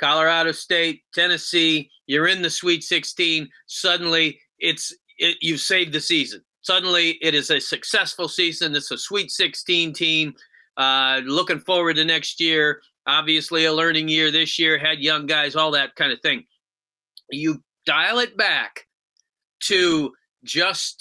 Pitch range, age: 150-175 Hz, 40-59